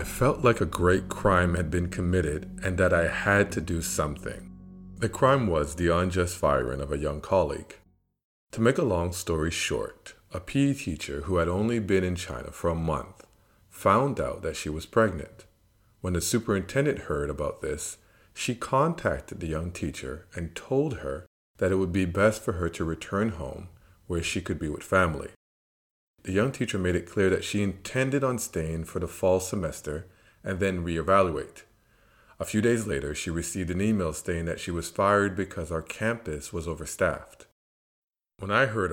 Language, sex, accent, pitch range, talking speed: English, male, American, 85-100 Hz, 185 wpm